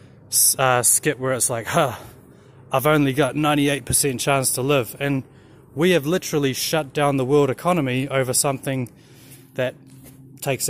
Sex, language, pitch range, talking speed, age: male, English, 130-165 Hz, 145 wpm, 20-39